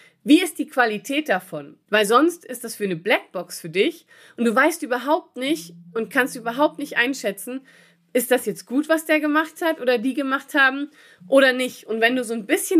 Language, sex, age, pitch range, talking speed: German, female, 30-49, 210-280 Hz, 205 wpm